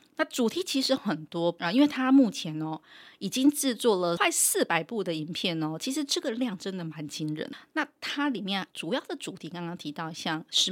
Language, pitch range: Chinese, 165-240 Hz